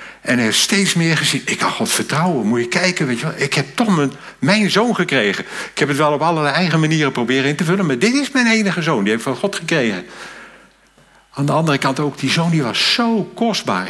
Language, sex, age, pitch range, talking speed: Dutch, male, 60-79, 130-175 Hz, 230 wpm